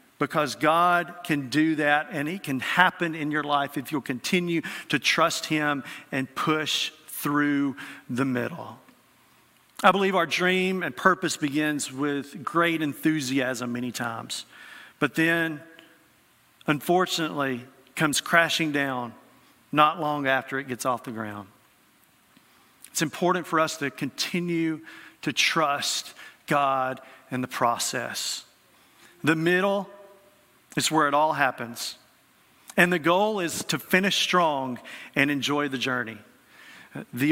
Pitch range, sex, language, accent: 145-180 Hz, male, English, American